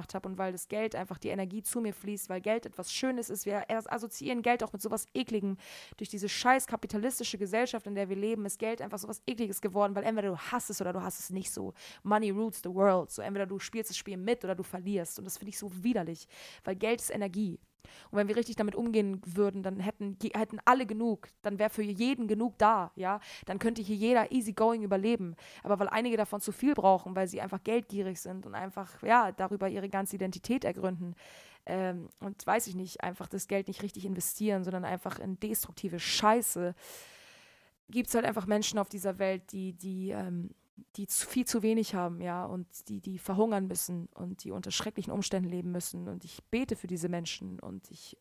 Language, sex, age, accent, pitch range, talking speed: German, female, 20-39, German, 185-215 Hz, 215 wpm